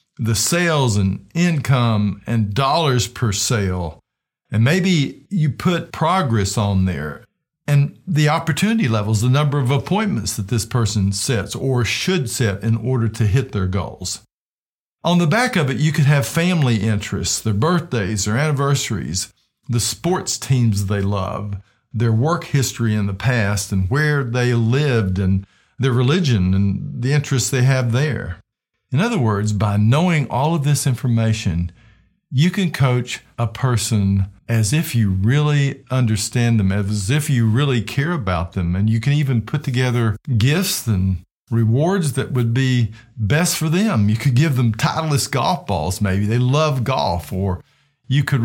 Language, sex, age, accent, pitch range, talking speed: English, male, 50-69, American, 105-145 Hz, 160 wpm